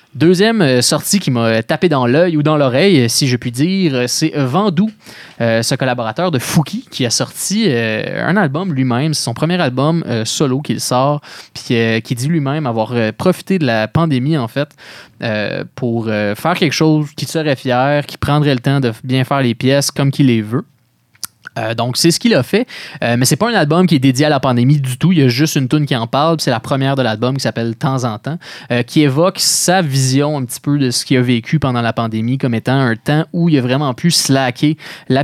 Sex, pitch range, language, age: male, 125-155 Hz, French, 20-39